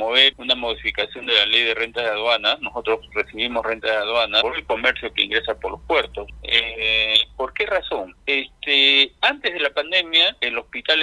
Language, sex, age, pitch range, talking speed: Spanish, male, 50-69, 110-150 Hz, 180 wpm